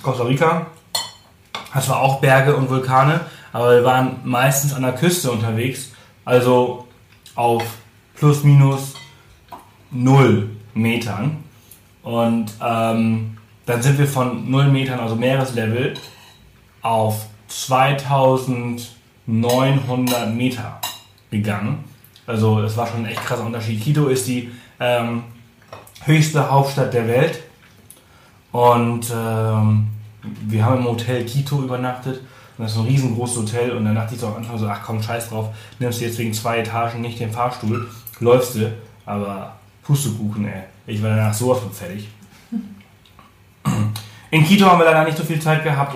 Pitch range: 115-135 Hz